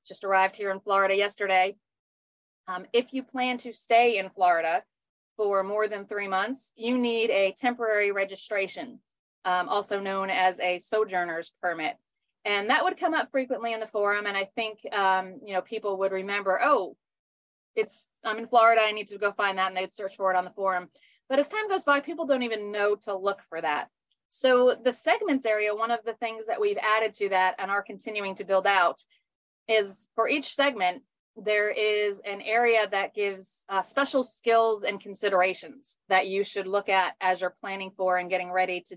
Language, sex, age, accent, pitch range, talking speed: English, female, 30-49, American, 190-230 Hz, 195 wpm